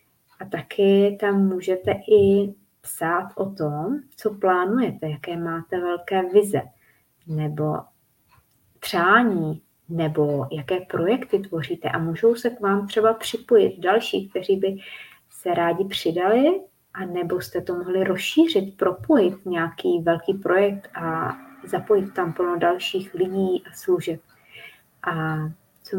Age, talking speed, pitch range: 20-39, 120 wpm, 170-200 Hz